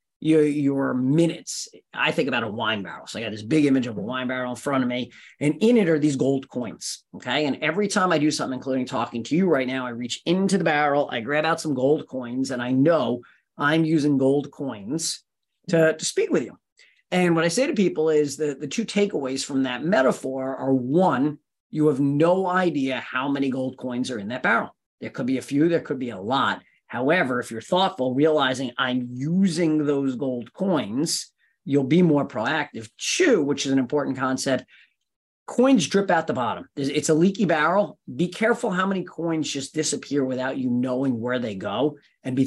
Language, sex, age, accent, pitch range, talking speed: English, male, 40-59, American, 130-175 Hz, 210 wpm